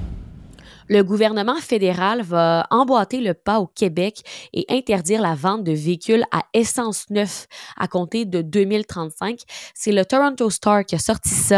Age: 20-39